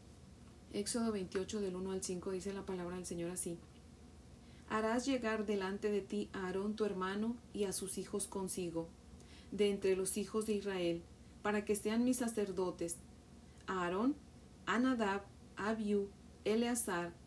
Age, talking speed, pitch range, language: 40-59, 145 wpm, 185-220 Hz, Spanish